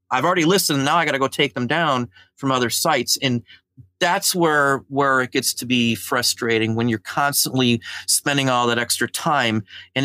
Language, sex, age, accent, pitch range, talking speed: English, male, 40-59, American, 120-150 Hz, 190 wpm